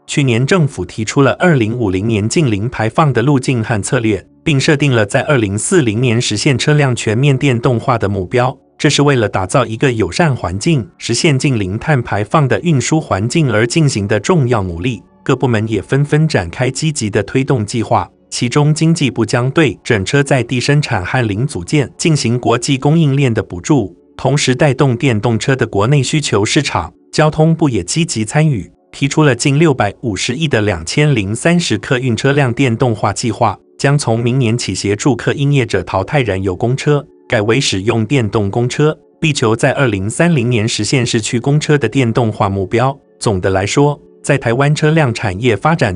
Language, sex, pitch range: Chinese, male, 110-145 Hz